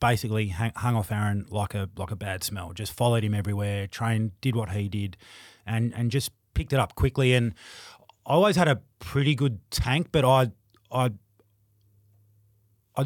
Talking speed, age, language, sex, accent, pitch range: 175 wpm, 30-49, English, male, Australian, 100-120 Hz